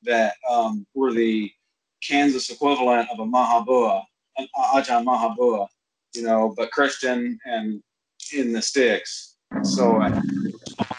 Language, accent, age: English, American, 30-49